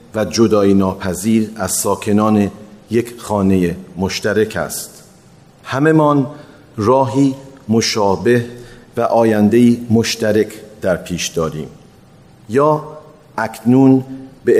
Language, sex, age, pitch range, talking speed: Persian, male, 40-59, 100-125 Hz, 85 wpm